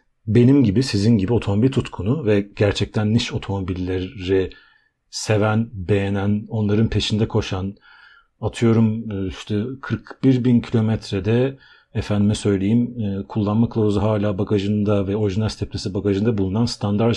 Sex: male